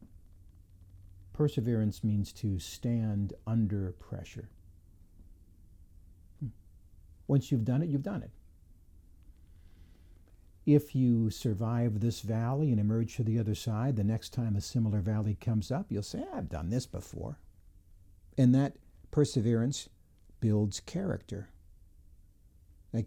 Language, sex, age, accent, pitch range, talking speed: English, male, 60-79, American, 85-115 Hz, 115 wpm